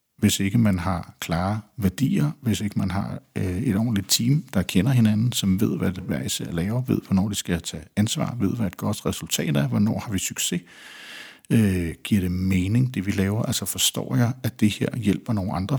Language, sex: Danish, male